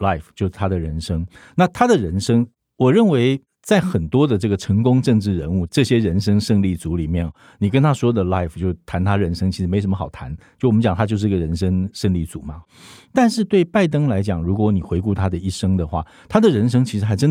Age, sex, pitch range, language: 50-69, male, 90-120 Hz, Chinese